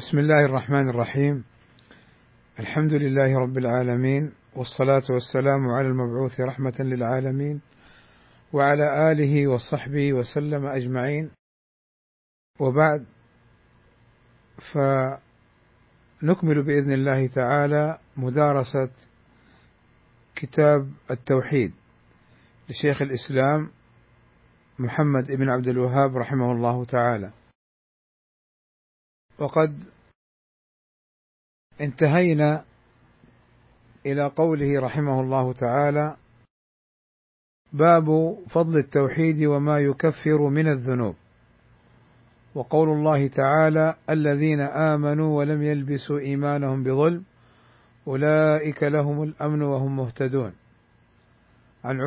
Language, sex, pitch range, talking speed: Arabic, male, 125-150 Hz, 75 wpm